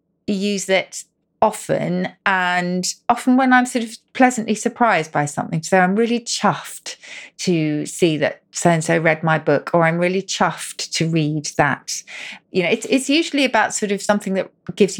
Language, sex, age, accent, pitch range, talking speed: English, female, 40-59, British, 165-225 Hz, 170 wpm